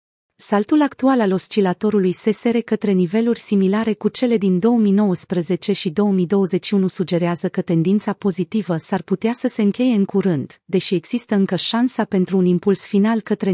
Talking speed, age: 150 wpm, 30-49